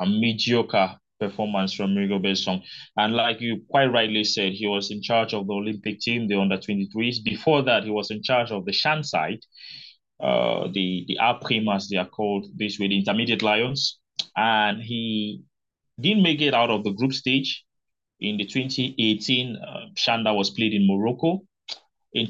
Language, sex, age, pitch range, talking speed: English, male, 20-39, 105-135 Hz, 175 wpm